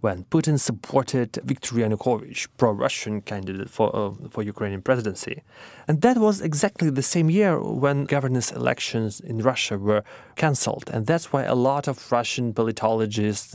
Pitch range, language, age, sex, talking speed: 110-140 Hz, English, 30-49, male, 150 wpm